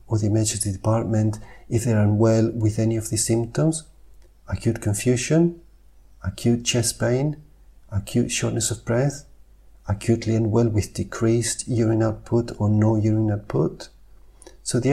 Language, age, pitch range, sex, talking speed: English, 50-69, 100-120 Hz, male, 135 wpm